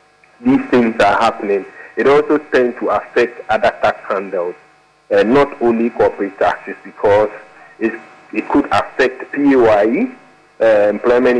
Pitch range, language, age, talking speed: 110-150 Hz, English, 50-69, 135 wpm